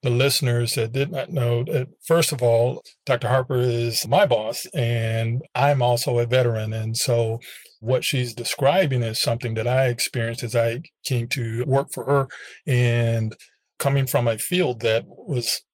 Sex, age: male, 40-59